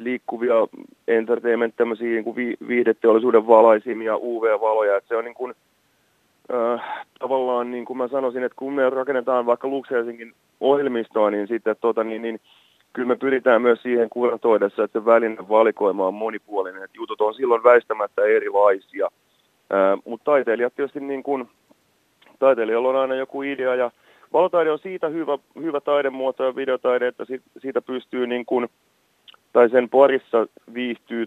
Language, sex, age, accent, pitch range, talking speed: Finnish, male, 30-49, native, 105-125 Hz, 145 wpm